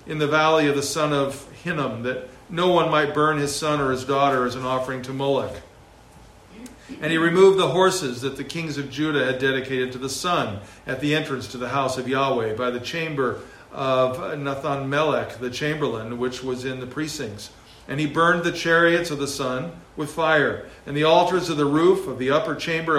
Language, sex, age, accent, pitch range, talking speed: English, male, 50-69, American, 130-155 Hz, 205 wpm